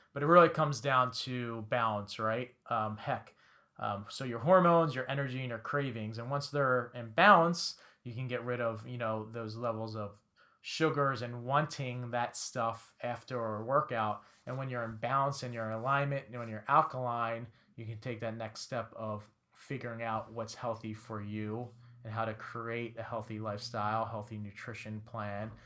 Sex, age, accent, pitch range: male, 30-49, American, 110-130 Hz